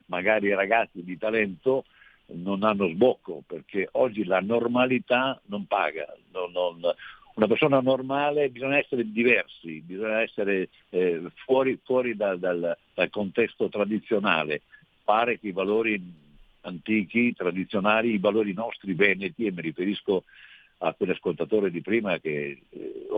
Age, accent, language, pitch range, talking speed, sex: 50-69, native, Italian, 95-120 Hz, 125 wpm, male